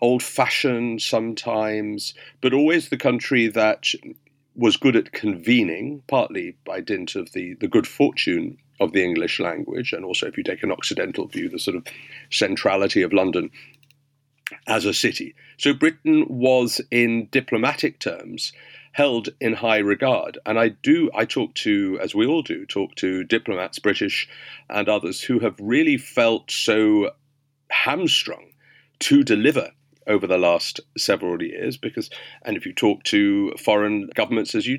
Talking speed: 155 wpm